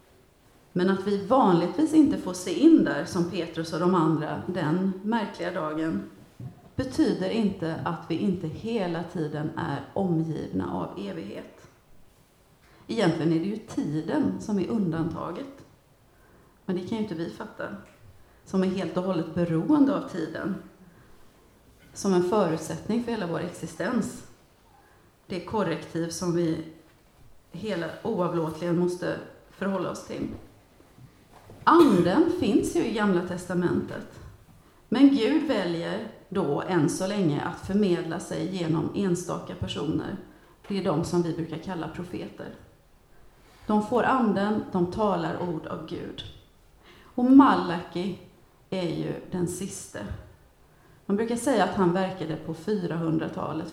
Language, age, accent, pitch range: Swedish, 40-59, native, 165-215 Hz